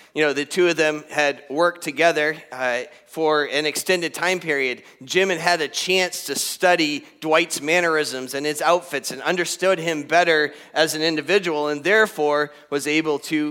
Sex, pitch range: male, 140-175 Hz